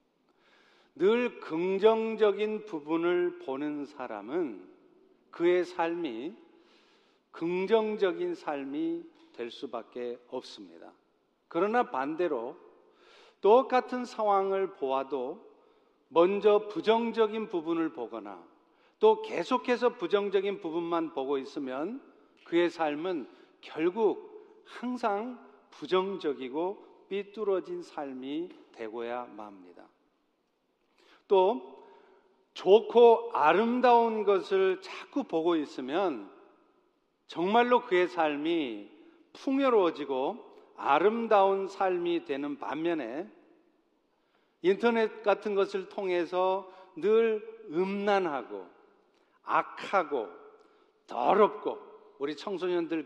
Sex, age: male, 50-69